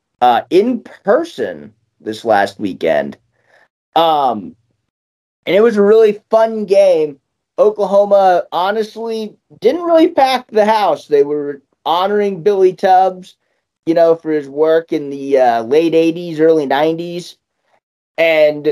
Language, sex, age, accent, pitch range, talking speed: English, male, 30-49, American, 135-200 Hz, 125 wpm